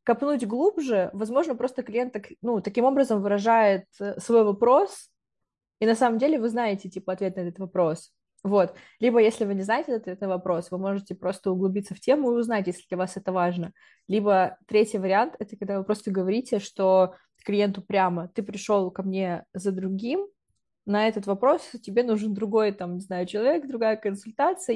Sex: female